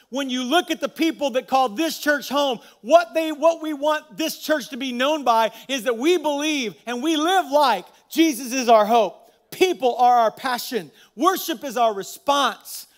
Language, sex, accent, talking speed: English, male, American, 195 wpm